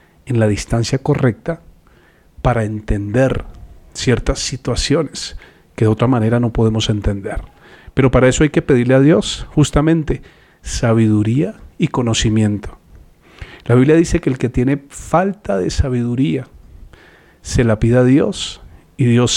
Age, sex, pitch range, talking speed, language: 40-59, male, 110-135 Hz, 135 wpm, Spanish